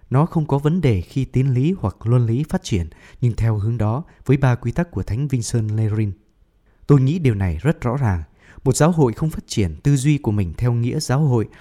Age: 20-39